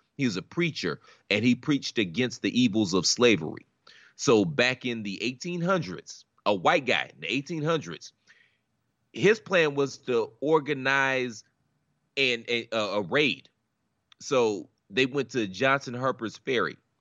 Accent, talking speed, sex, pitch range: American, 135 wpm, male, 100-135 Hz